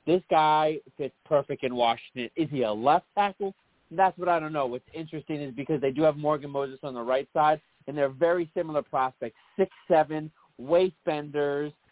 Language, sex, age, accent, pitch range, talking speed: English, male, 30-49, American, 130-155 Hz, 185 wpm